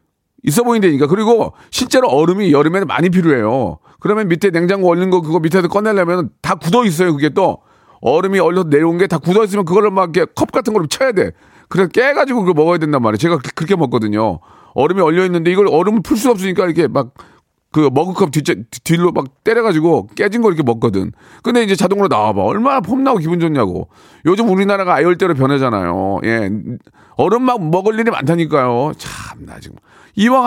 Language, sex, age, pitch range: Korean, male, 40-59, 120-195 Hz